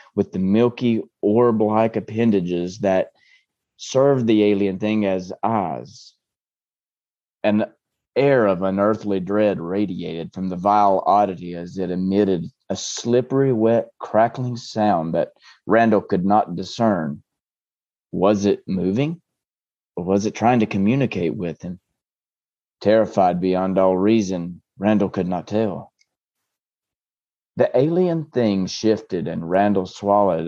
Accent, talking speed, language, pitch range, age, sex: American, 120 wpm, English, 95-110 Hz, 30-49, male